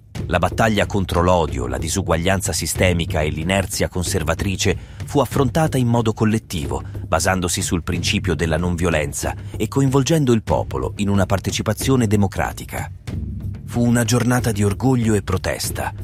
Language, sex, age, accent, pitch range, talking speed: Italian, male, 30-49, native, 85-110 Hz, 130 wpm